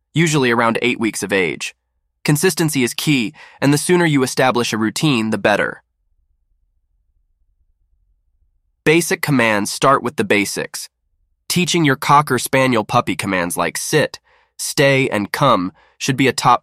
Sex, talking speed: male, 140 wpm